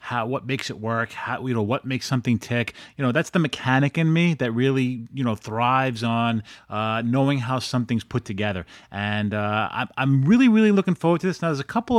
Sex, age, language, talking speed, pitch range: male, 30-49, English, 220 wpm, 115-150 Hz